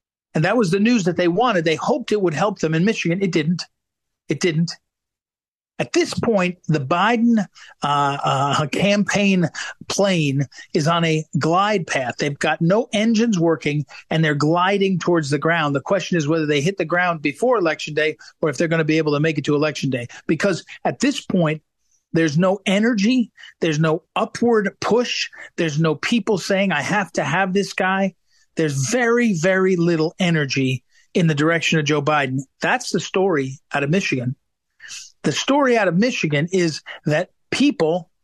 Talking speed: 180 wpm